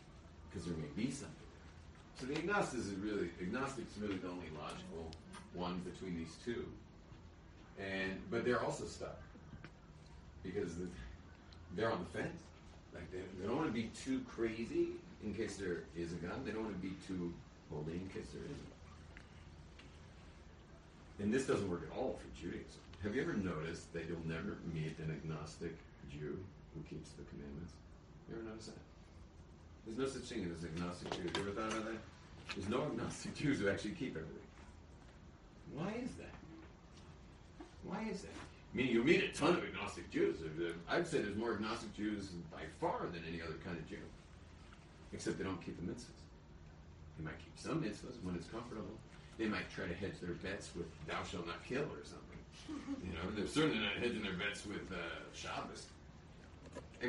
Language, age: English, 40-59